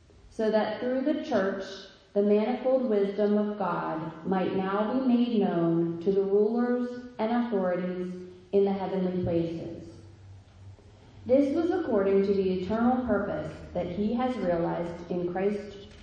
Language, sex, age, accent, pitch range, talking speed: English, female, 30-49, American, 180-235 Hz, 140 wpm